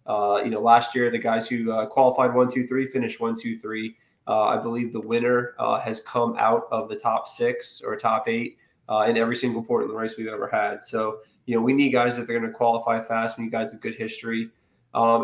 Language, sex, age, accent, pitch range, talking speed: English, male, 20-39, American, 115-130 Hz, 250 wpm